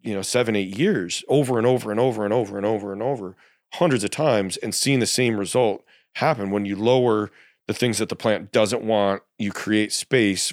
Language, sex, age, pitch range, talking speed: English, male, 40-59, 100-115 Hz, 215 wpm